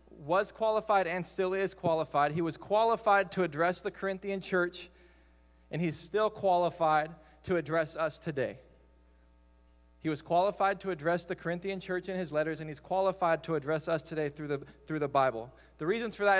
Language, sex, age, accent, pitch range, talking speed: English, male, 20-39, American, 155-190 Hz, 180 wpm